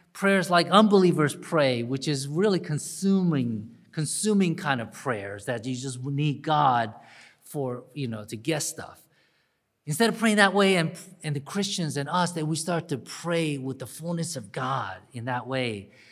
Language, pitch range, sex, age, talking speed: English, 140-185 Hz, male, 40-59, 175 wpm